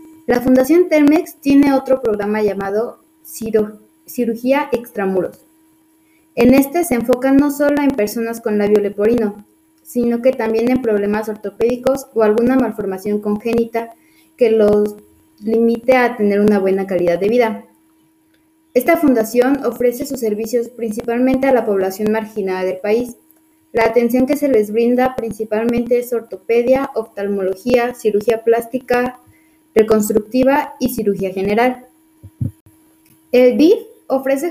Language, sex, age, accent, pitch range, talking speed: Spanish, female, 20-39, Mexican, 215-270 Hz, 125 wpm